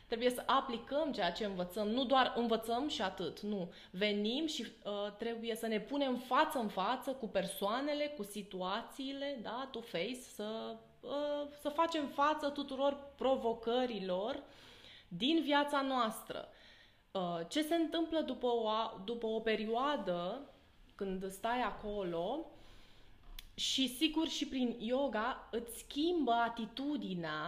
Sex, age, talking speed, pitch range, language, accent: female, 20-39, 130 wpm, 205-275 Hz, Romanian, native